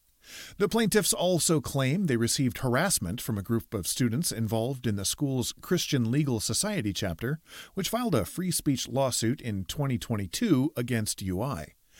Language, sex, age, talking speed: English, male, 40-59, 150 wpm